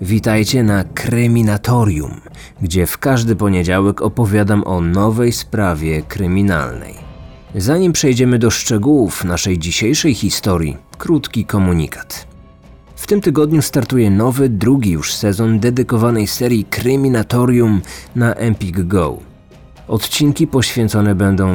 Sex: male